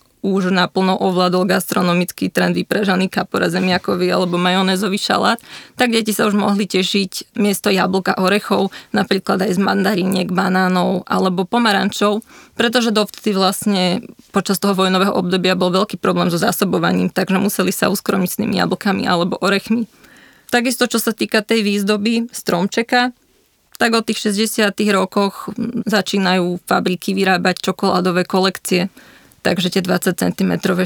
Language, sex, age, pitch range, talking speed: Slovak, female, 20-39, 180-205 Hz, 130 wpm